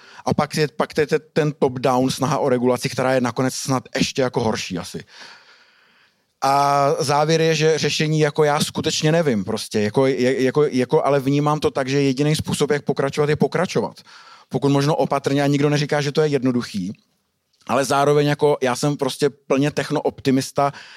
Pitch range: 135-150 Hz